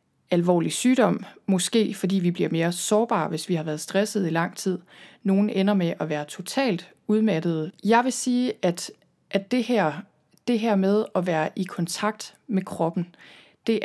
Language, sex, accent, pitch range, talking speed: Danish, female, native, 180-215 Hz, 170 wpm